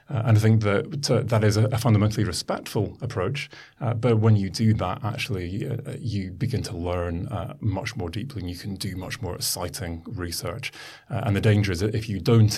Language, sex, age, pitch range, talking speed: English, male, 30-49, 100-115 Hz, 215 wpm